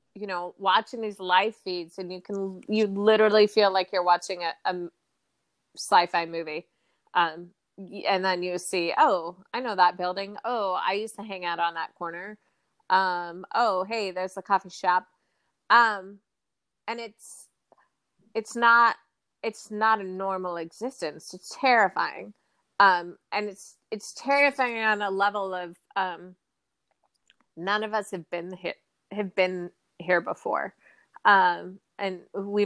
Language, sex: English, female